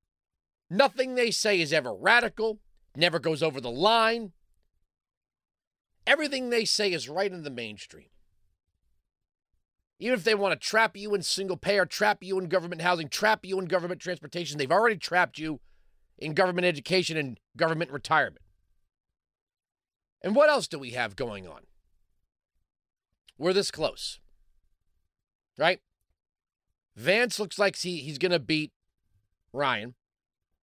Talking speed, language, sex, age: 135 wpm, English, male, 40-59